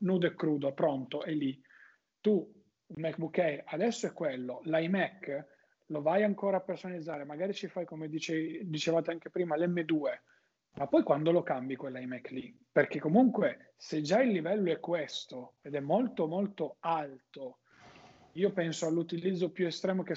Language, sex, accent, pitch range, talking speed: Italian, male, native, 150-180 Hz, 160 wpm